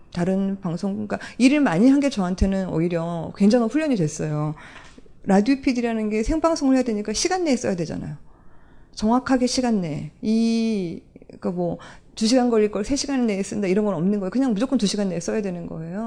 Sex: female